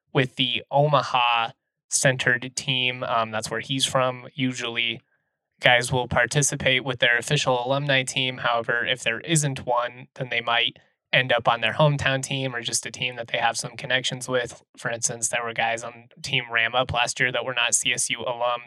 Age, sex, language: 20-39, male, English